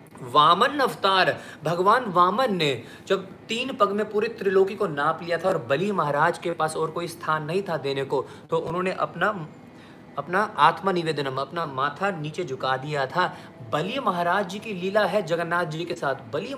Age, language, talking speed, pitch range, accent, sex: 30-49, Hindi, 175 wpm, 140-185 Hz, native, male